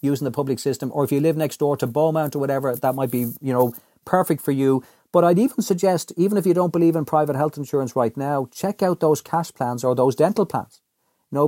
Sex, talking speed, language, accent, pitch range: male, 245 wpm, English, Irish, 130-160 Hz